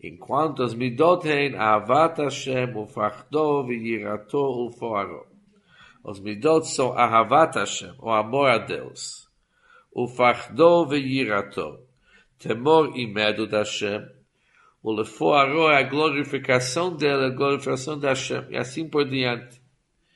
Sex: male